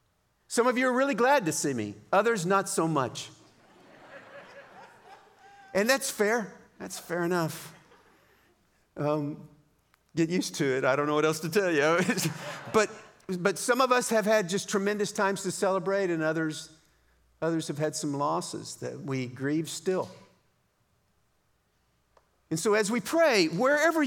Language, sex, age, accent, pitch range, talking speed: English, male, 50-69, American, 135-200 Hz, 150 wpm